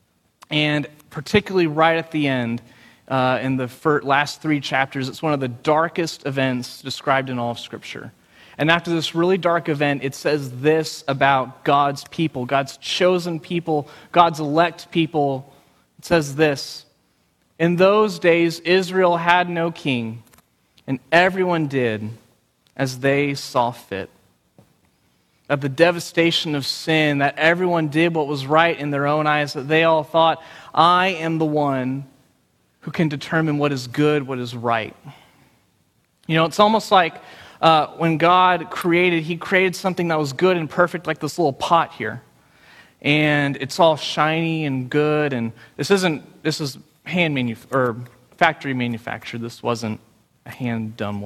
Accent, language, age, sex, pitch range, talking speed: American, English, 30-49, male, 130-165 Hz, 155 wpm